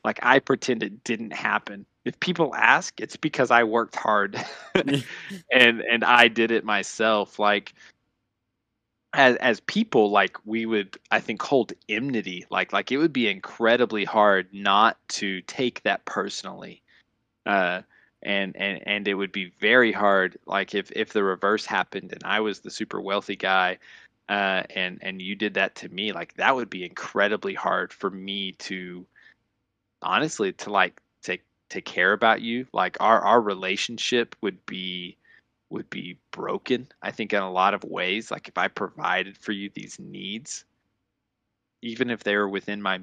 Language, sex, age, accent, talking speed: English, male, 20-39, American, 170 wpm